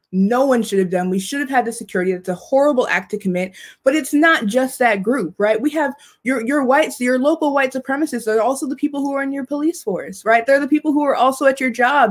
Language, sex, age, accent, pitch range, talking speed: English, female, 20-39, American, 235-310 Hz, 265 wpm